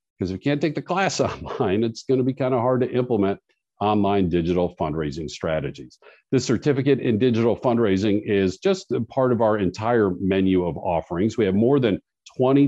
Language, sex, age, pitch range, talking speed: English, male, 50-69, 95-130 Hz, 190 wpm